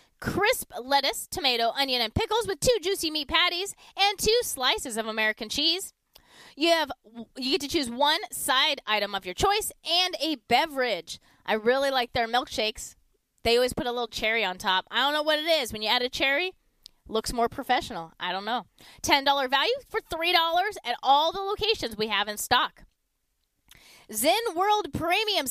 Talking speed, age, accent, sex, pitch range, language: 180 wpm, 20-39, American, female, 235-330 Hz, English